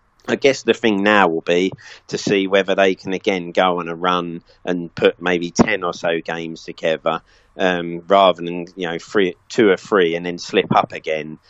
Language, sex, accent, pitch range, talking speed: English, male, British, 85-95 Hz, 200 wpm